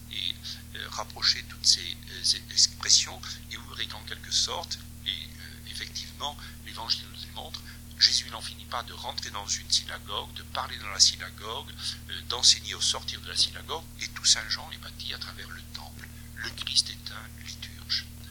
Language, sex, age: French, male, 60-79